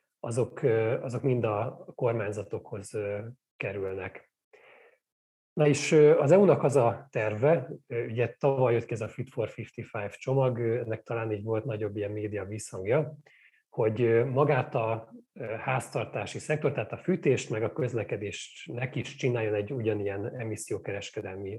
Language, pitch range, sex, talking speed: Hungarian, 110-135 Hz, male, 130 wpm